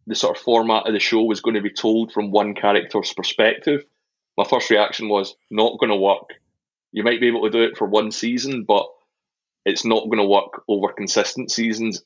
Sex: male